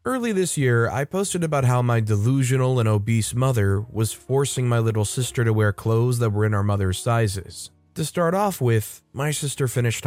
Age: 20-39